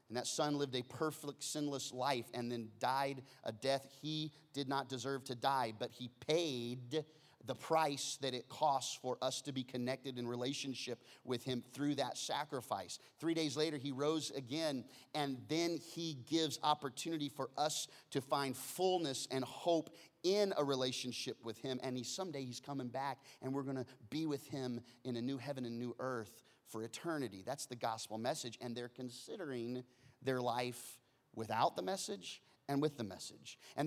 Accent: American